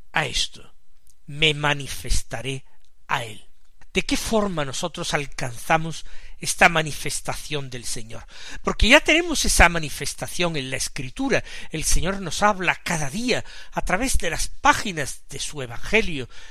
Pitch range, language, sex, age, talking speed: 140-205 Hz, Spanish, male, 50-69, 135 wpm